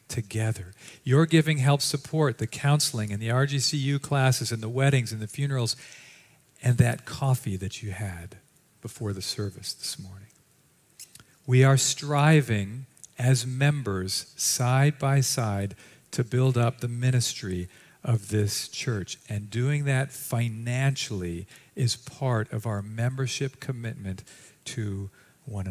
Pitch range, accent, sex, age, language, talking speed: 115-140 Hz, American, male, 50-69, English, 130 wpm